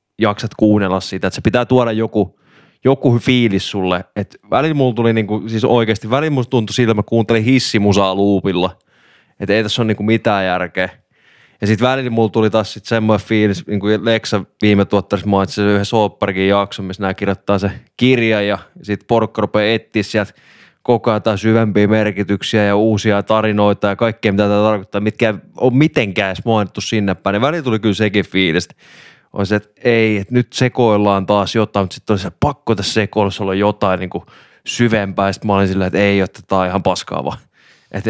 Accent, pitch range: native, 100-115 Hz